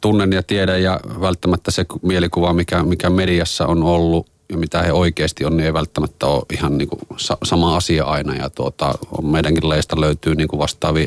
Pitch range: 80-90 Hz